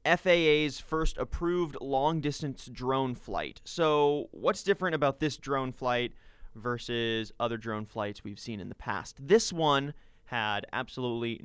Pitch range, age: 115-150 Hz, 20-39